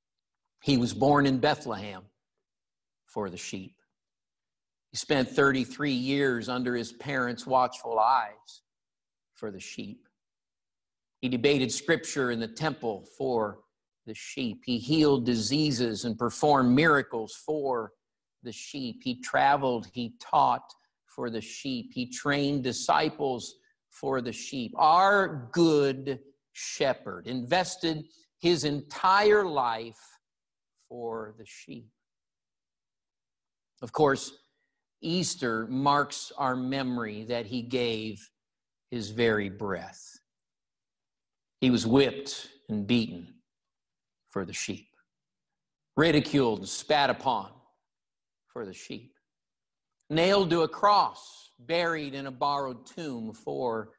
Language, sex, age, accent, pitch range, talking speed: English, male, 50-69, American, 120-150 Hz, 110 wpm